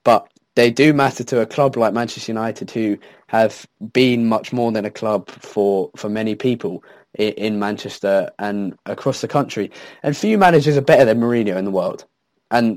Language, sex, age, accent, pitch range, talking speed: English, male, 20-39, British, 105-130 Hz, 185 wpm